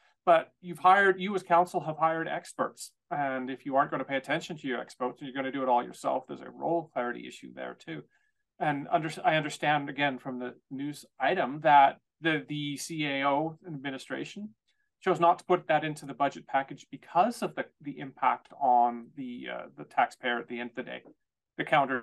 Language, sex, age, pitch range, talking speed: English, male, 30-49, 140-190 Hz, 205 wpm